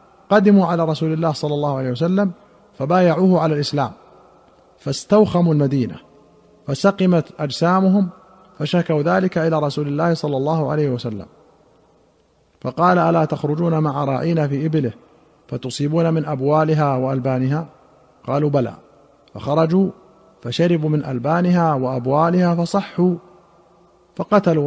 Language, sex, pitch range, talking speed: Arabic, male, 140-175 Hz, 105 wpm